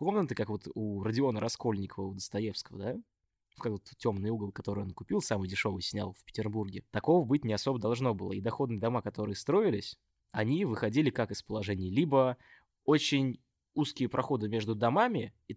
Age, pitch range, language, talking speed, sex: 20-39, 105-135 Hz, Russian, 170 wpm, male